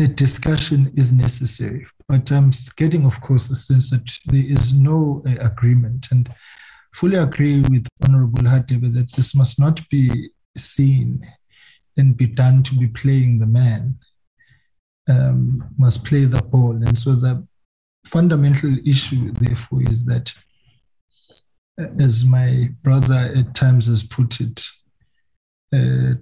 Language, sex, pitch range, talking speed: English, male, 120-135 Hz, 135 wpm